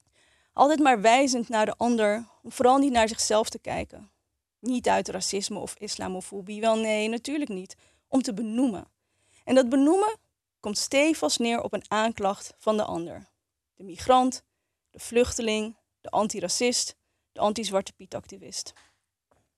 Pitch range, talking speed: 200-245 Hz, 140 wpm